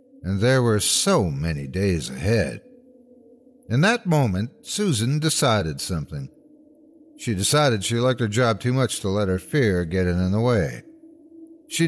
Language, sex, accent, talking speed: English, male, American, 150 wpm